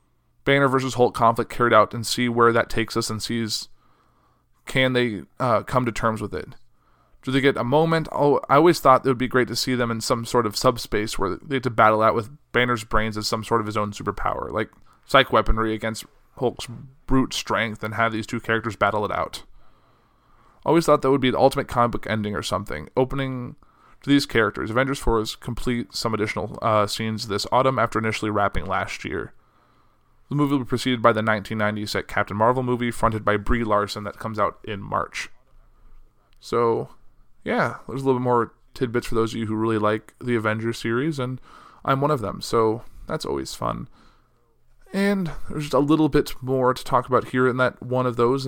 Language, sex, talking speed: English, male, 210 wpm